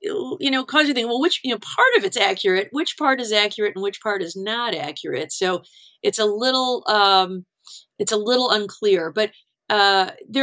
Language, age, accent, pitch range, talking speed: English, 50-69, American, 185-255 Hz, 200 wpm